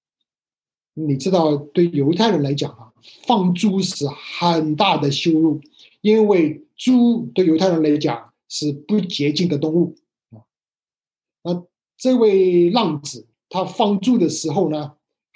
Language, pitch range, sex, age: Chinese, 145-190 Hz, male, 60-79